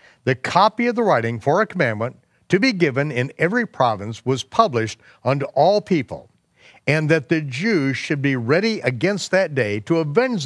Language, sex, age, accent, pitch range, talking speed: English, male, 60-79, American, 155-205 Hz, 180 wpm